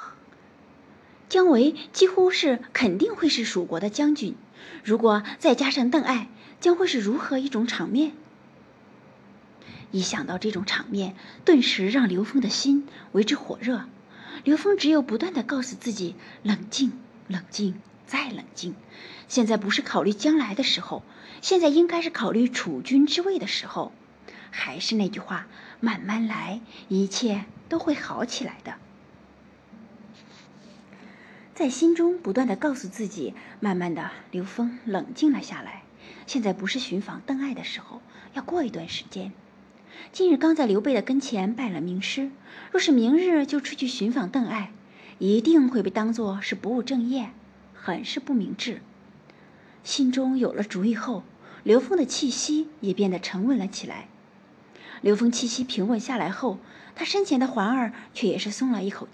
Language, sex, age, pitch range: Chinese, female, 30-49, 210-280 Hz